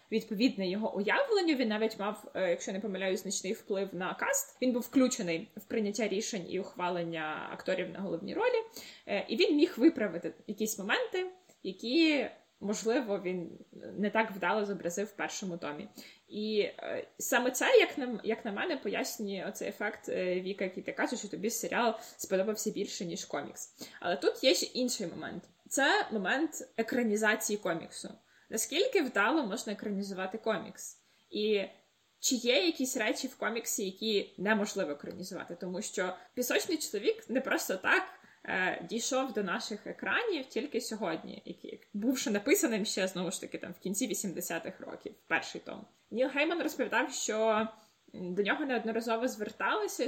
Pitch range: 195-255 Hz